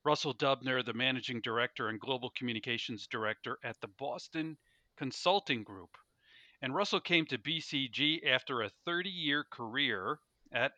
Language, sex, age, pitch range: English, male, 50-69, 120-150 Hz